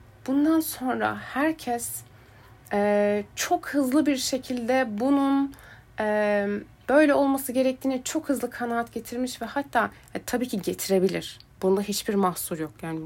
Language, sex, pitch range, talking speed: Turkish, female, 190-260 Hz, 130 wpm